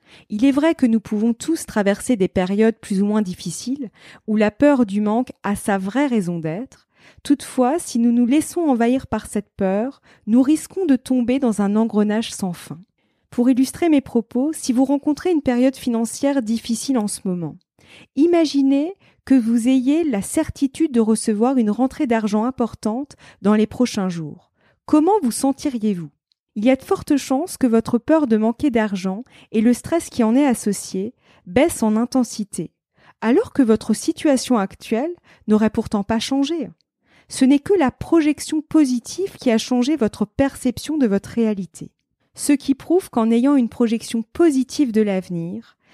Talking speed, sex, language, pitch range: 170 wpm, female, French, 215-275 Hz